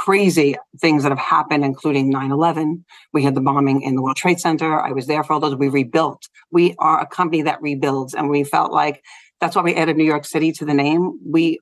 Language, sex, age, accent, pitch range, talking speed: English, female, 50-69, American, 145-175 Hz, 230 wpm